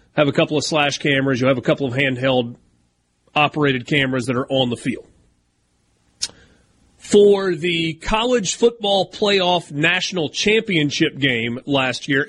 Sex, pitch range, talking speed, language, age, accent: male, 130-170 Hz, 140 wpm, English, 40-59, American